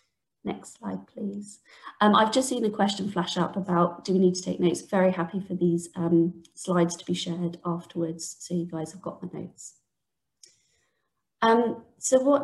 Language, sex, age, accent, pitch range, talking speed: English, female, 30-49, British, 175-195 Hz, 185 wpm